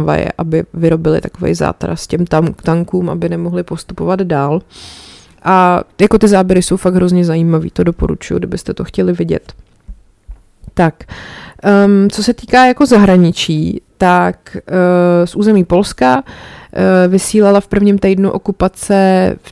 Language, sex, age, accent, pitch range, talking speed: Czech, female, 20-39, native, 170-190 Hz, 140 wpm